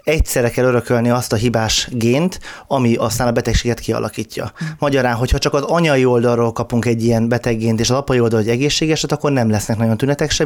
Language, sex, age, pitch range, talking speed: Hungarian, male, 20-39, 115-145 Hz, 195 wpm